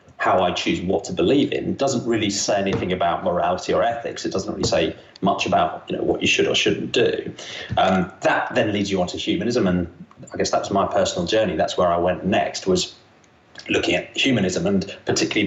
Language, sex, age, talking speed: English, male, 30-49, 210 wpm